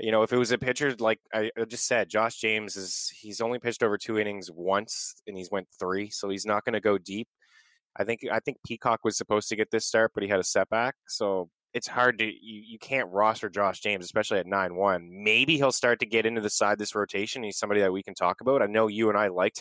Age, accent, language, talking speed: 20-39, American, English, 255 wpm